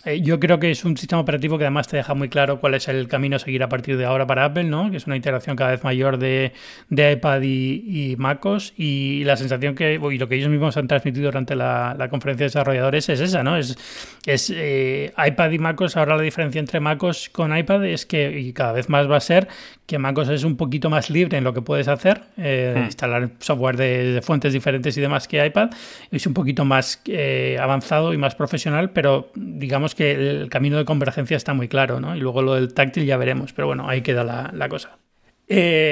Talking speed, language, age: 230 wpm, Spanish, 30-49